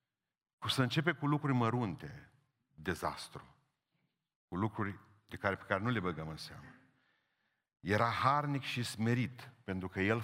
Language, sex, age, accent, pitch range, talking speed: Romanian, male, 50-69, native, 90-115 Hz, 145 wpm